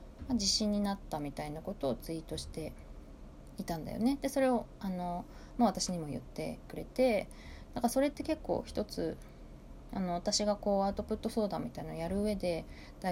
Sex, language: female, Japanese